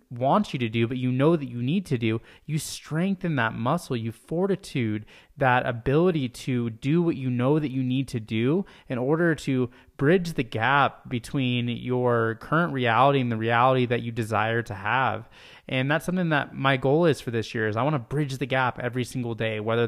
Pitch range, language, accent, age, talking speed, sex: 115-140 Hz, English, American, 20-39, 210 wpm, male